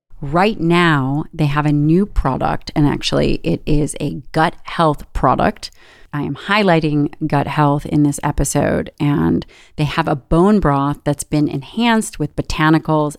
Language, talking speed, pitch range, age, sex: English, 155 wpm, 145-175 Hz, 30-49, female